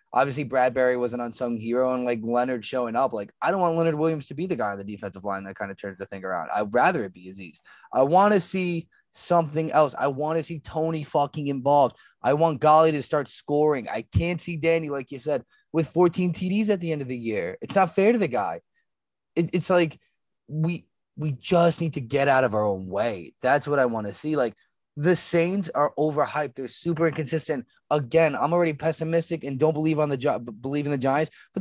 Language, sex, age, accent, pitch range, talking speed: English, male, 20-39, American, 130-175 Hz, 225 wpm